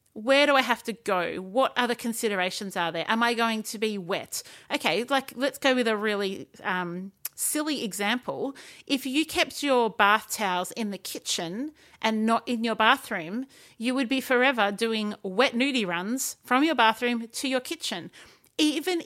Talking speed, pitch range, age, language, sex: 175 wpm, 200-255 Hz, 30-49, English, female